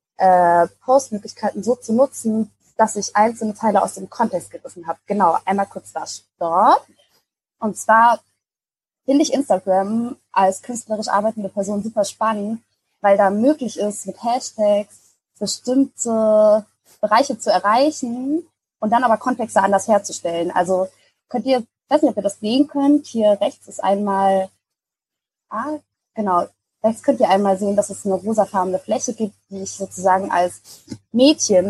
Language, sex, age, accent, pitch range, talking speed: German, female, 20-39, German, 190-235 Hz, 150 wpm